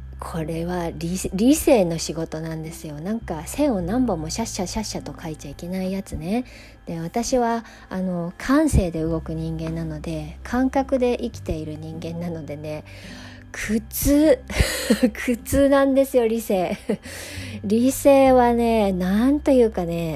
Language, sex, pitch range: Japanese, female, 155-240 Hz